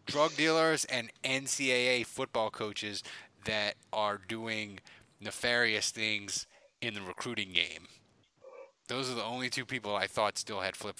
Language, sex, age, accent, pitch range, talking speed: English, male, 30-49, American, 120-175 Hz, 140 wpm